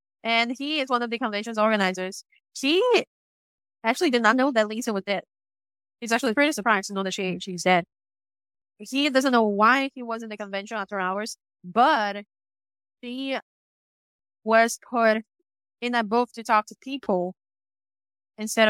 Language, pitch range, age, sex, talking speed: English, 195-245 Hz, 10-29, female, 160 wpm